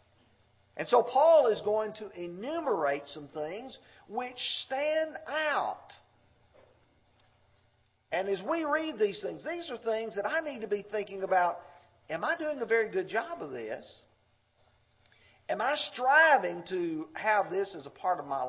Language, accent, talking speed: English, American, 155 wpm